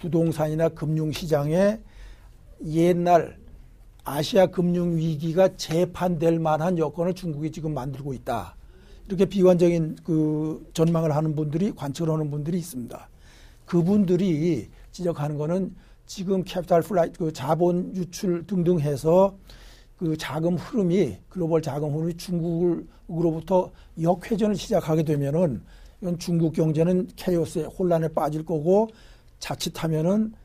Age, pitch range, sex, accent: 60-79, 155-180 Hz, male, native